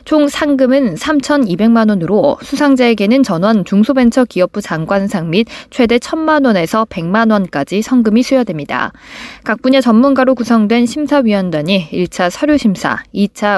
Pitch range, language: 195-260 Hz, Korean